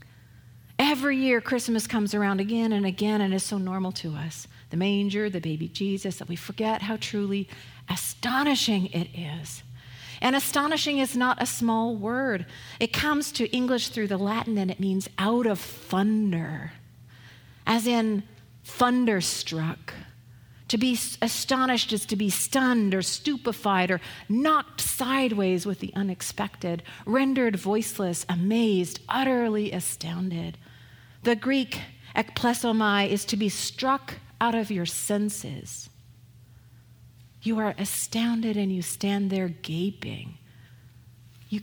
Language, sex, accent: English, female, American